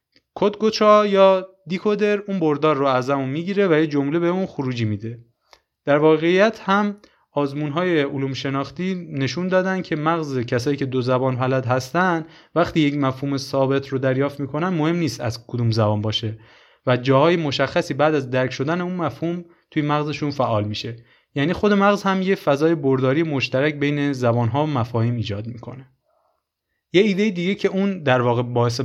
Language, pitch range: Persian, 125-160 Hz